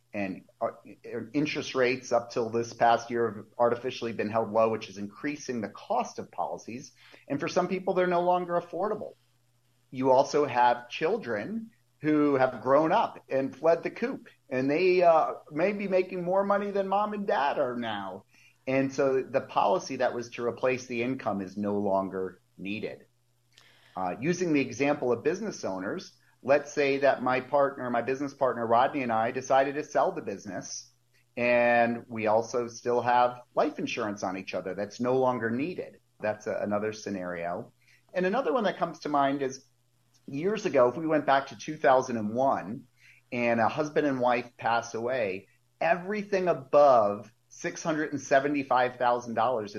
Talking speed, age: 160 wpm, 30-49